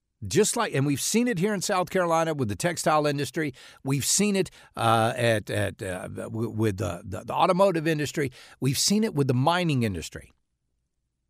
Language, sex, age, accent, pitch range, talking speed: English, male, 60-79, American, 105-155 Hz, 180 wpm